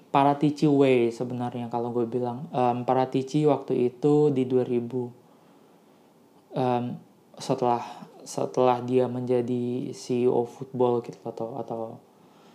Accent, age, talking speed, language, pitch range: native, 20-39, 105 wpm, Indonesian, 125-140 Hz